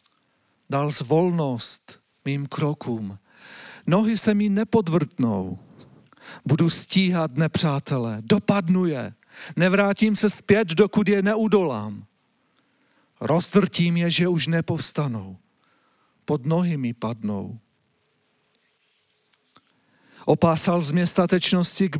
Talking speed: 85 wpm